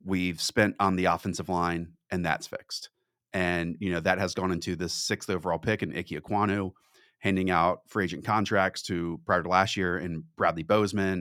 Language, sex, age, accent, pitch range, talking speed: English, male, 30-49, American, 90-105 Hz, 195 wpm